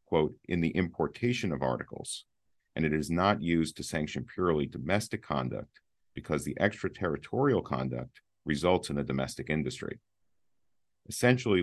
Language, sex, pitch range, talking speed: English, male, 75-100 Hz, 135 wpm